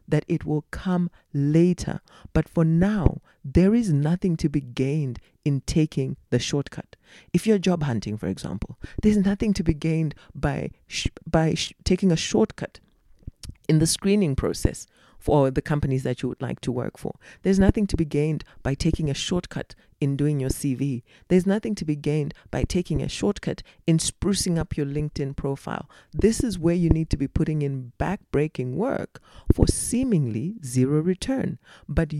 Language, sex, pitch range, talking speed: English, female, 140-185 Hz, 175 wpm